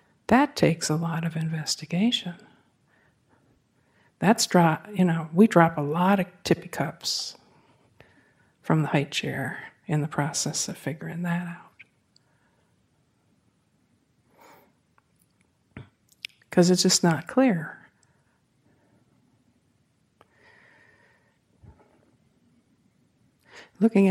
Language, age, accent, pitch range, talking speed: English, 50-69, American, 160-175 Hz, 80 wpm